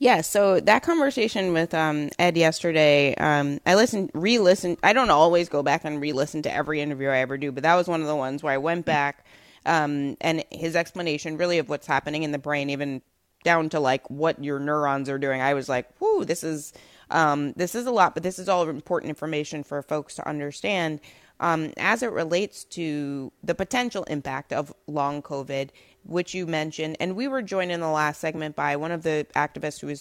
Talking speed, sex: 215 wpm, female